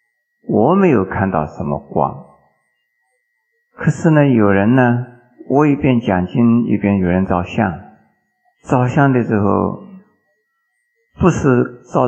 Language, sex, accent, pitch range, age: Chinese, male, native, 100-135 Hz, 50-69